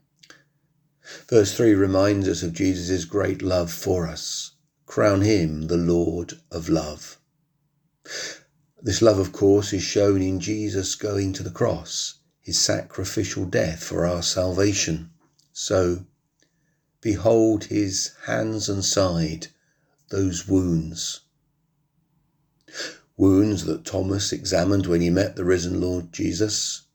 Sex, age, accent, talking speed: male, 40-59, British, 120 wpm